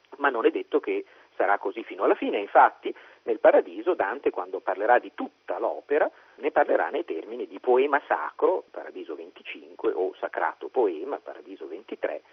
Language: Italian